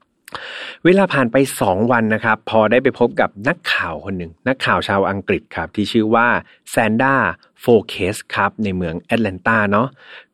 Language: Thai